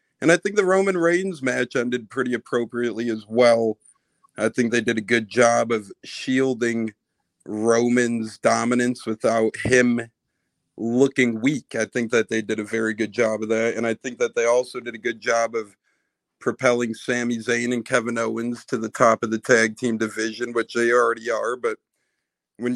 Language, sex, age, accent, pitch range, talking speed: English, male, 40-59, American, 115-130 Hz, 180 wpm